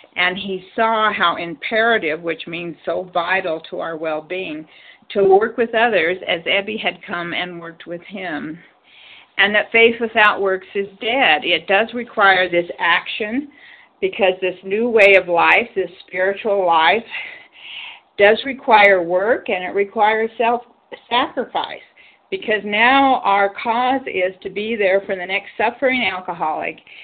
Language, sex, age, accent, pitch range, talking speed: English, female, 50-69, American, 175-220 Hz, 145 wpm